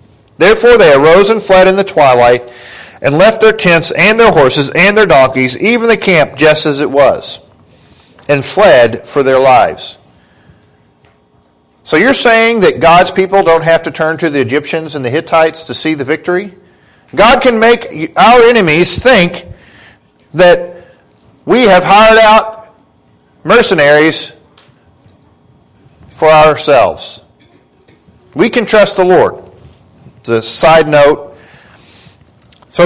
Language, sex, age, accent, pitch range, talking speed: English, male, 50-69, American, 150-220 Hz, 135 wpm